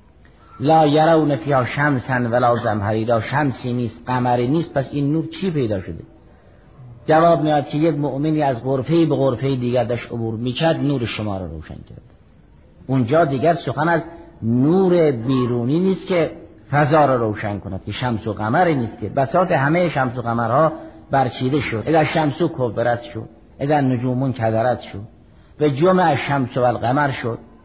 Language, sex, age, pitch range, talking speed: Persian, male, 50-69, 115-160 Hz, 165 wpm